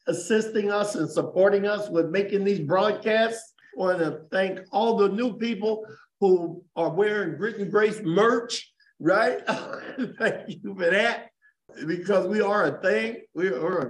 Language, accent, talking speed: English, American, 155 wpm